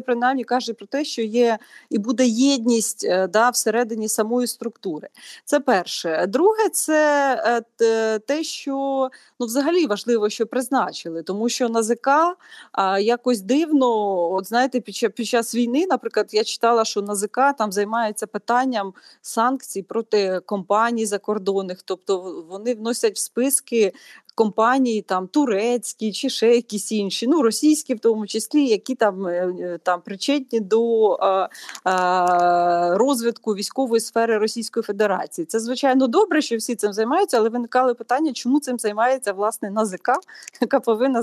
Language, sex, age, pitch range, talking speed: Ukrainian, female, 30-49, 210-255 Hz, 140 wpm